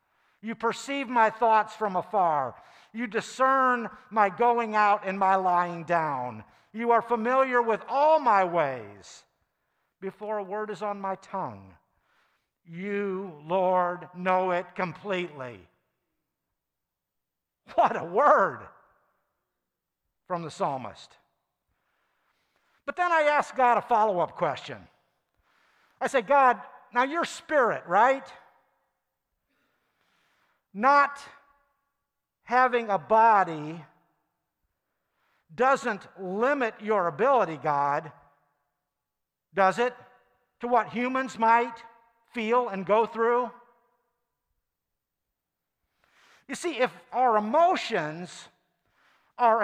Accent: American